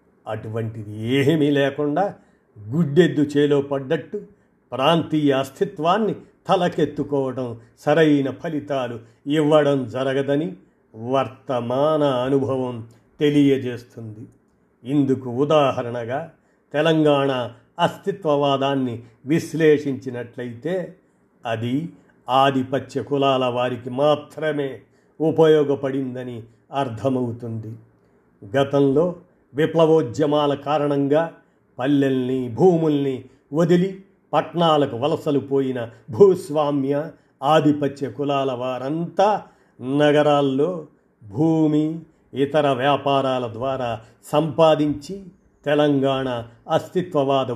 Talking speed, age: 60 wpm, 50-69